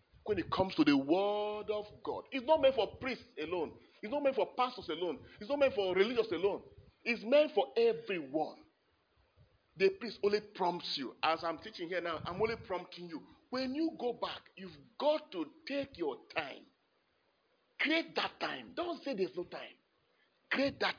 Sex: male